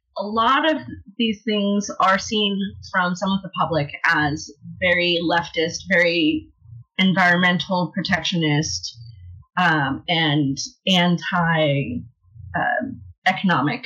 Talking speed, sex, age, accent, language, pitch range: 90 wpm, female, 30-49, American, English, 150-190 Hz